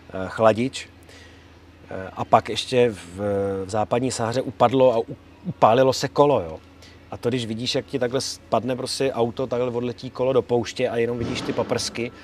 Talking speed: 165 wpm